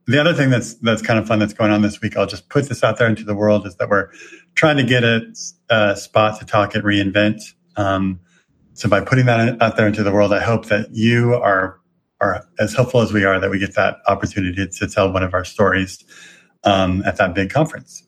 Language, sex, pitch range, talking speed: English, male, 100-120 Hz, 240 wpm